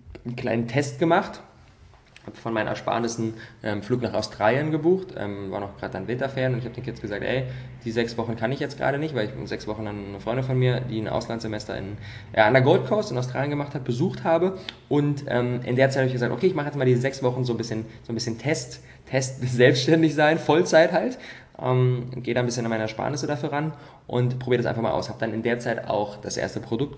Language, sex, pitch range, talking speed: German, male, 115-145 Hz, 250 wpm